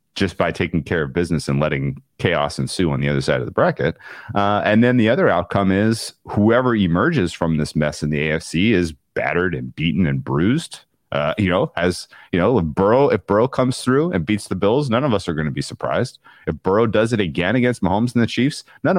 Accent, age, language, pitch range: American, 30-49, English, 75-115 Hz